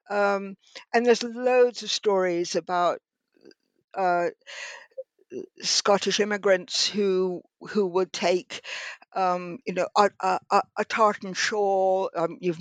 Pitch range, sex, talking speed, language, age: 190-235 Hz, female, 115 wpm, English, 60-79